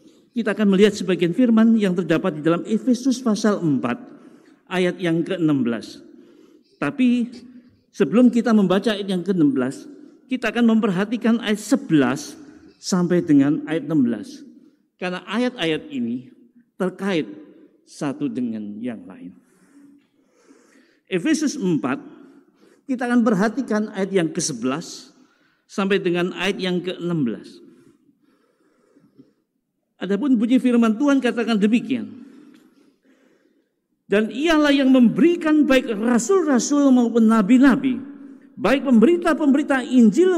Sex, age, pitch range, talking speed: male, 50-69, 215-285 Hz, 105 wpm